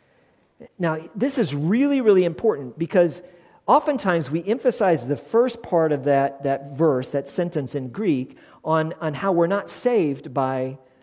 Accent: American